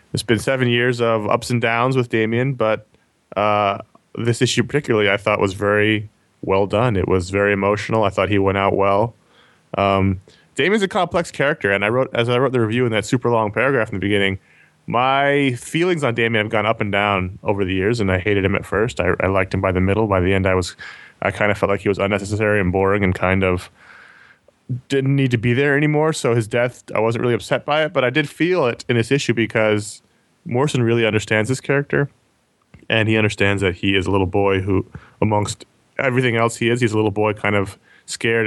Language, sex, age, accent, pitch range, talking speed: English, male, 20-39, American, 100-120 Hz, 230 wpm